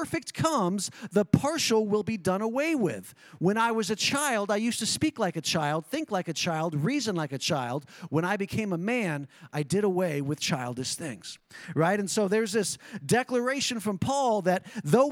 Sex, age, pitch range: male, 40-59, 170-235 Hz